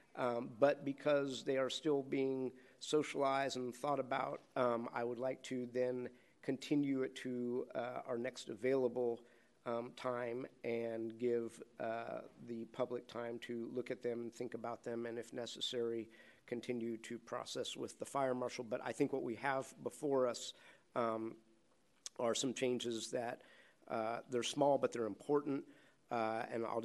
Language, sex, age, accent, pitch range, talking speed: English, male, 50-69, American, 120-130 Hz, 160 wpm